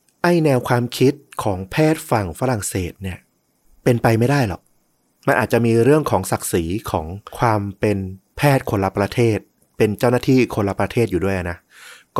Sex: male